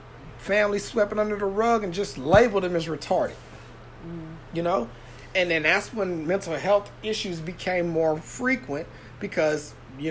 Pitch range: 160-200 Hz